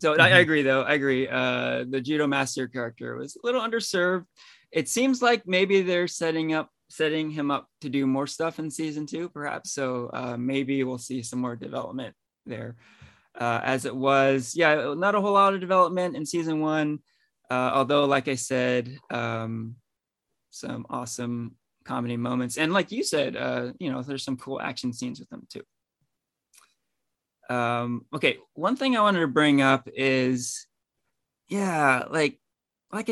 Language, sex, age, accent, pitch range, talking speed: English, male, 20-39, American, 130-180 Hz, 170 wpm